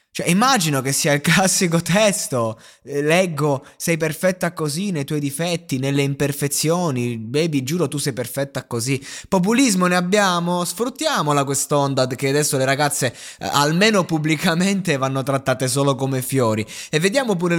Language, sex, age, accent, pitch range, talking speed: Italian, male, 20-39, native, 125-170 Hz, 140 wpm